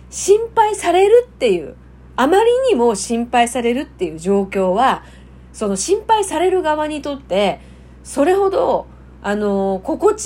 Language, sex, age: Japanese, female, 40-59